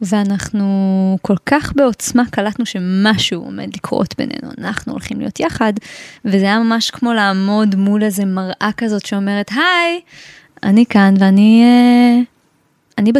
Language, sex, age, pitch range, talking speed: Hebrew, female, 20-39, 200-240 Hz, 125 wpm